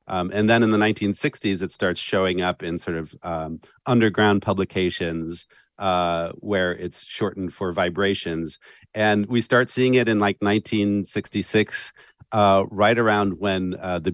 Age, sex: 40-59, male